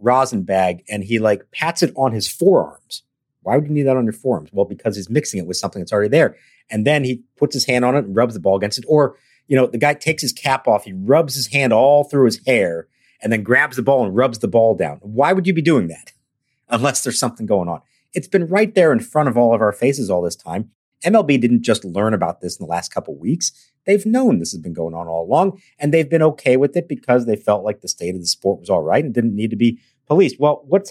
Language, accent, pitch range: English, American, 105-140 Hz